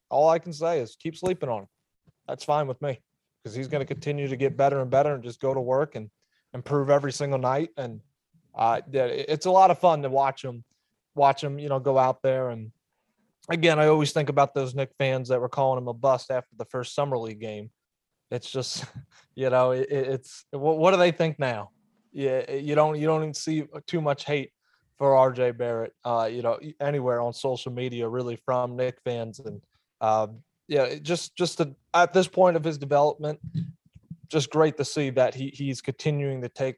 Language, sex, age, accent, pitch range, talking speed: English, male, 30-49, American, 125-150 Hz, 205 wpm